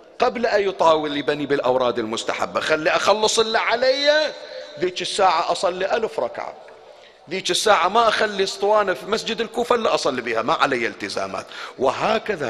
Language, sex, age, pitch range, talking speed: Arabic, male, 50-69, 155-230 Hz, 145 wpm